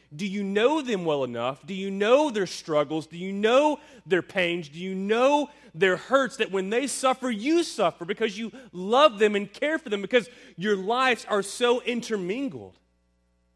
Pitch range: 160-230 Hz